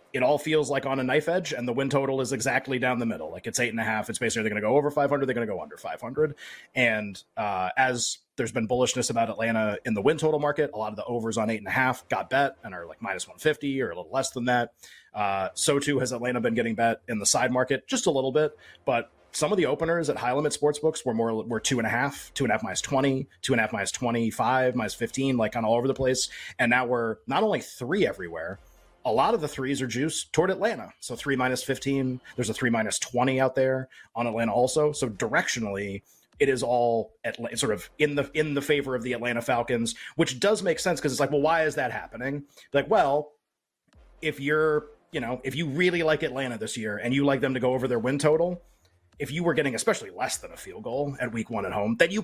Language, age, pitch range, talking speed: English, 30-49, 120-155 Hz, 260 wpm